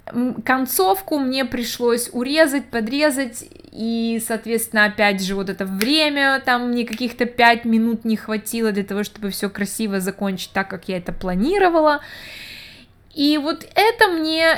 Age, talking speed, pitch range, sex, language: 20-39, 140 wpm, 195-250 Hz, female, Russian